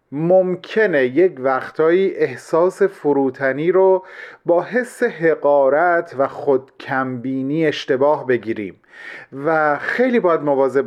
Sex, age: male, 40-59